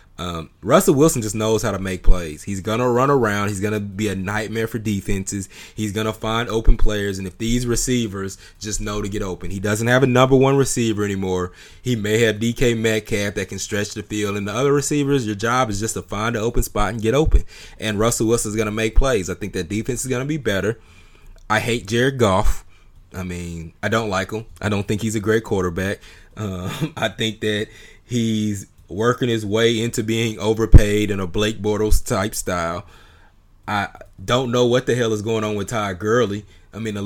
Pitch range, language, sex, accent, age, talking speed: 100-115 Hz, English, male, American, 20-39, 220 wpm